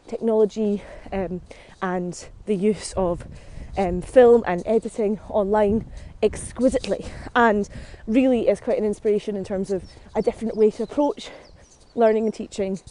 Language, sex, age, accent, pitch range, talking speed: English, female, 20-39, British, 200-240 Hz, 135 wpm